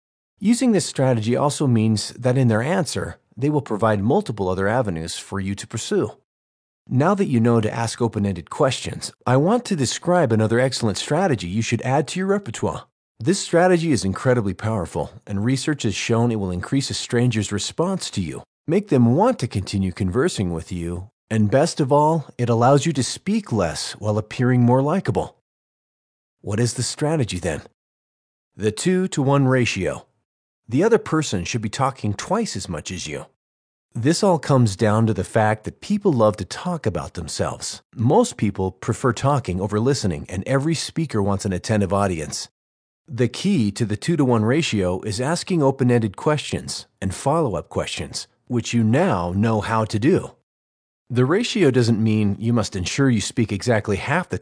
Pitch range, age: 100-145 Hz, 40-59